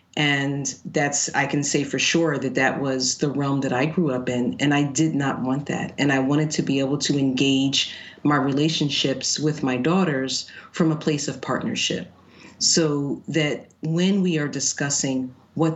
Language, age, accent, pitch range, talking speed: English, 40-59, American, 135-165 Hz, 185 wpm